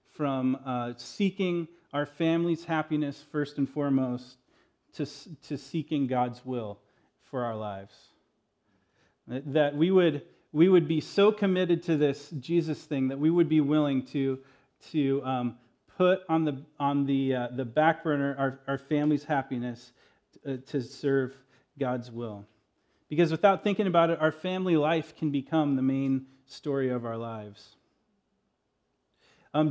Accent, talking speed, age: American, 145 wpm, 40-59